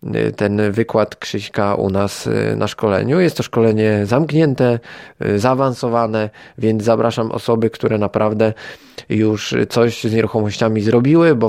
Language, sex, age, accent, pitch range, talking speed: Polish, male, 20-39, native, 110-130 Hz, 120 wpm